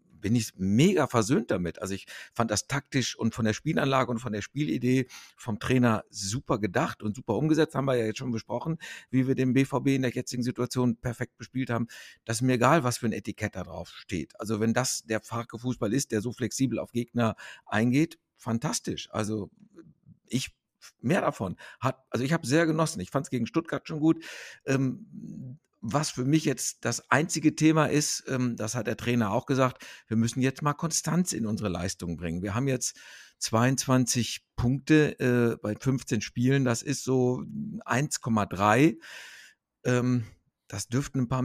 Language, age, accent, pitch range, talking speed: German, 50-69, German, 115-140 Hz, 180 wpm